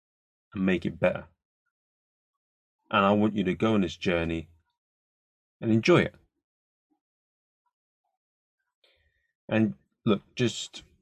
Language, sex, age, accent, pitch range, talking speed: English, male, 30-49, British, 95-125 Hz, 100 wpm